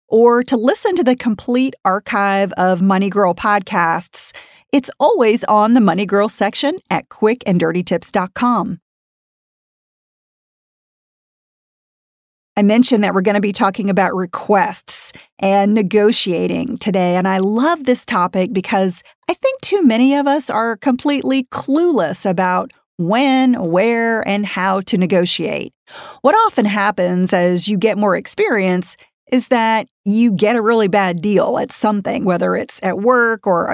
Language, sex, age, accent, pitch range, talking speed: English, female, 40-59, American, 190-245 Hz, 140 wpm